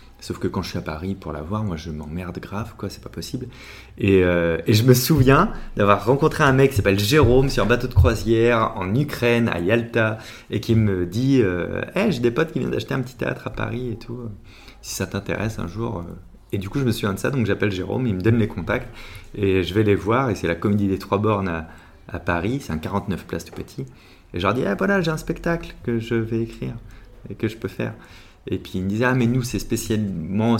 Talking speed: 260 wpm